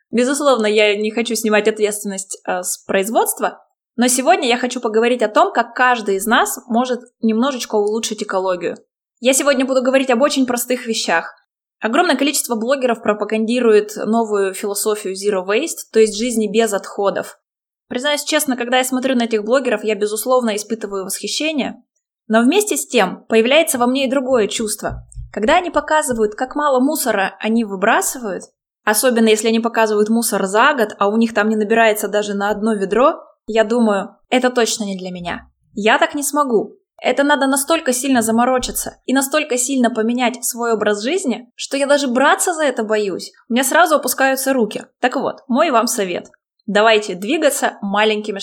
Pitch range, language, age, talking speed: 215-270 Hz, Russian, 20-39, 165 wpm